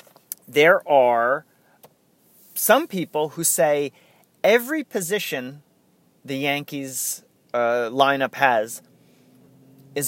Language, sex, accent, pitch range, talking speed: English, male, American, 130-170 Hz, 85 wpm